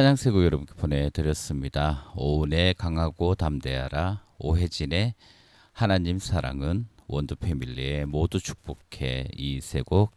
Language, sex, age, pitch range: Korean, male, 40-59, 75-100 Hz